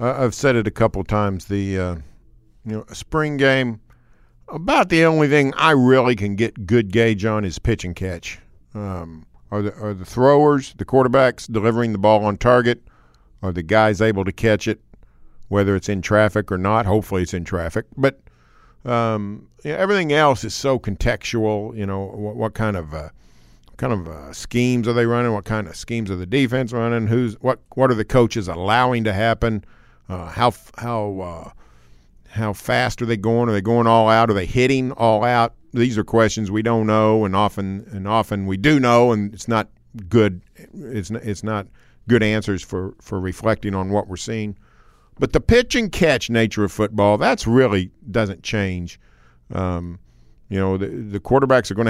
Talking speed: 190 wpm